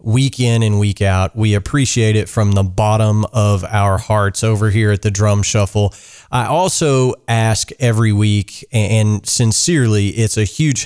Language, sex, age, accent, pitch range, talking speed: English, male, 30-49, American, 105-125 Hz, 165 wpm